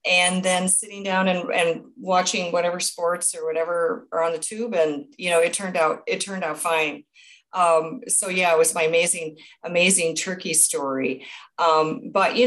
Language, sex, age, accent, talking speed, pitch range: English, female, 40-59, American, 185 wpm, 155-220 Hz